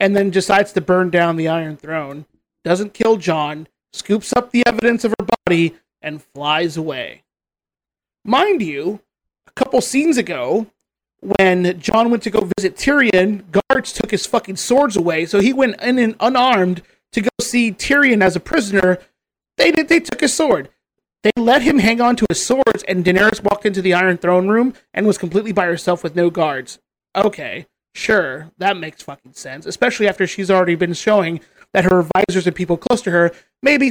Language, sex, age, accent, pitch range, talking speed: English, male, 30-49, American, 185-240 Hz, 185 wpm